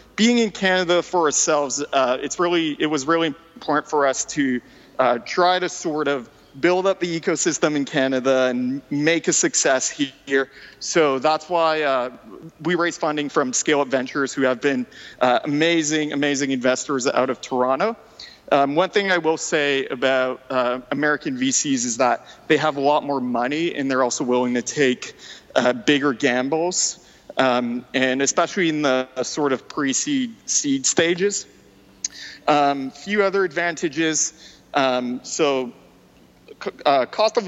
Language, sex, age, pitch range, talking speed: English, male, 40-59, 130-170 Hz, 155 wpm